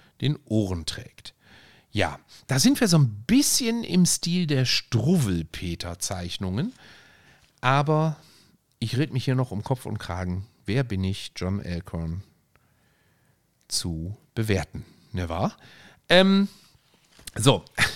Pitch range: 100-135 Hz